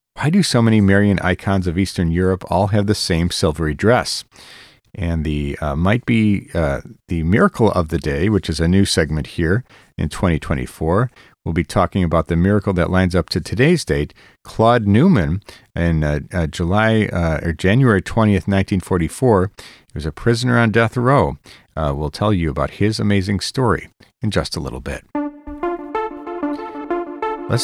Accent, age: American, 50-69